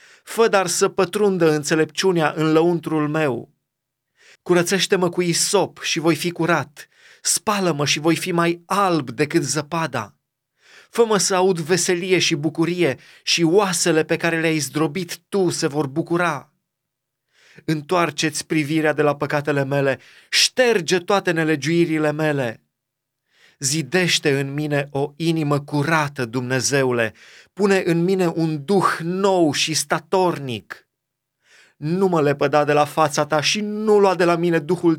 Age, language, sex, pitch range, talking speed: 30-49, Romanian, male, 150-180 Hz, 135 wpm